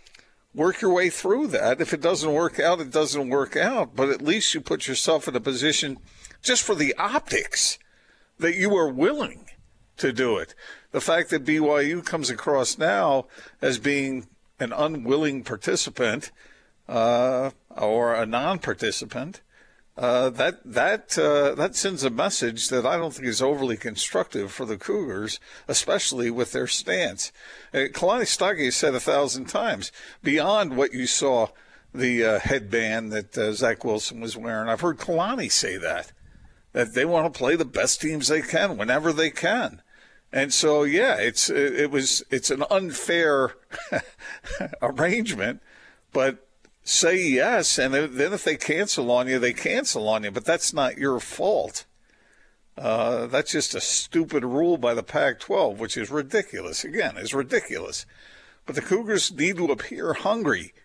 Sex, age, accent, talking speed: male, 50-69, American, 160 wpm